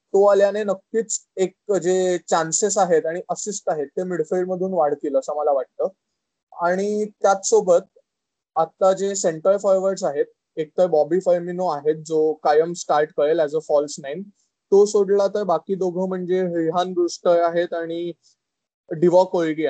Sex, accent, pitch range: male, native, 165-195 Hz